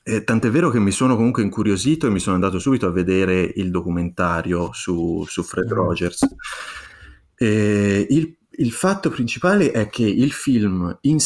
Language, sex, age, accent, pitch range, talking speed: Italian, male, 30-49, native, 90-115 Hz, 165 wpm